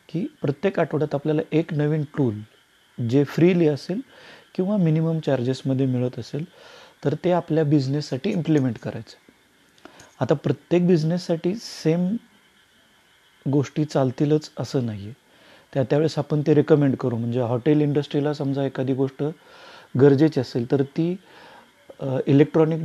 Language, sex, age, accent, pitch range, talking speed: Marathi, male, 30-49, native, 130-155 Hz, 120 wpm